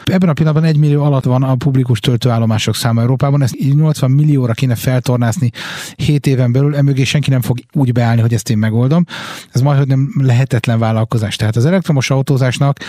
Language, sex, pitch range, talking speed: Hungarian, male, 115-140 Hz, 175 wpm